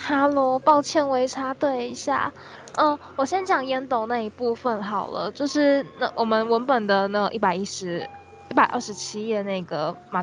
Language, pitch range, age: Chinese, 195-255 Hz, 10-29